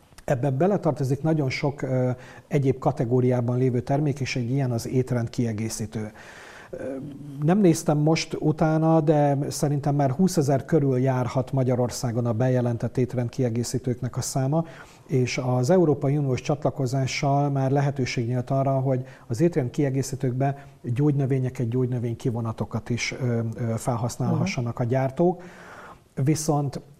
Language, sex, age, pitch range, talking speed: Hungarian, male, 50-69, 125-150 Hz, 110 wpm